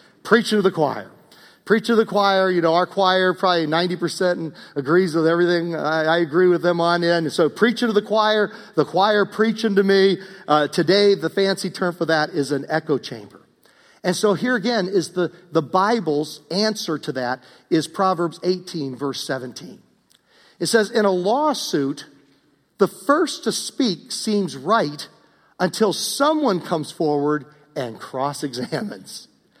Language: English